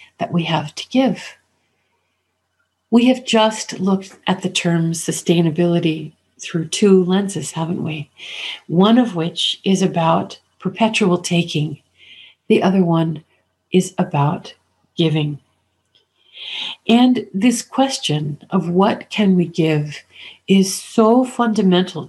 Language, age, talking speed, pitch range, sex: English, 50-69, 115 wpm, 165-200 Hz, female